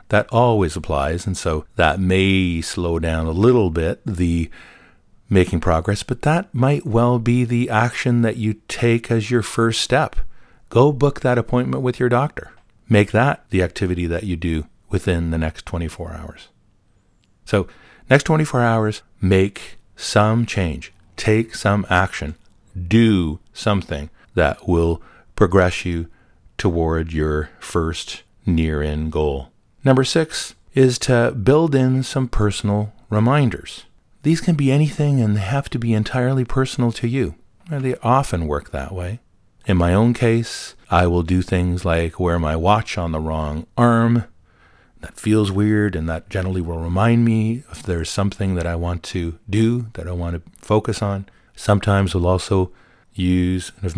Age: 50-69